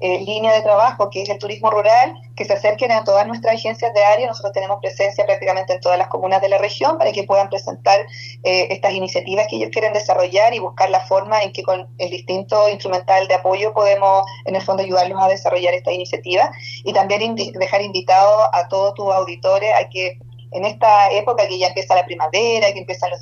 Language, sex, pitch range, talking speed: Spanish, female, 185-215 Hz, 215 wpm